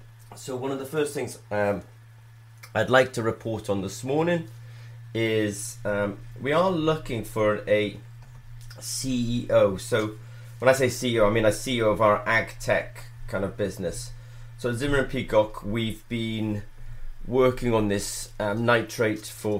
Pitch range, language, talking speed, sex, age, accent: 105-120 Hz, English, 155 wpm, male, 30-49, British